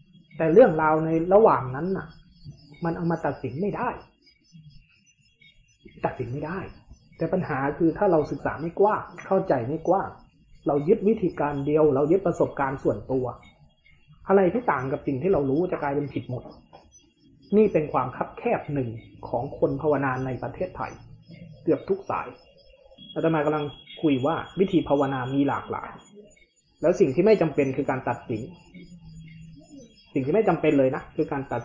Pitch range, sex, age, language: 140-185 Hz, male, 20-39, Thai